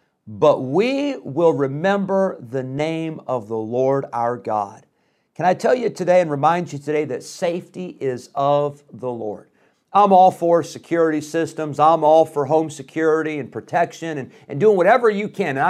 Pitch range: 130-165 Hz